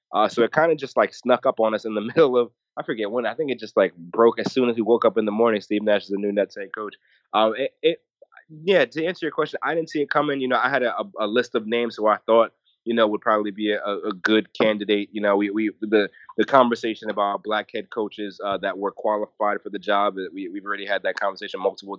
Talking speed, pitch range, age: 270 wpm, 105-125 Hz, 20-39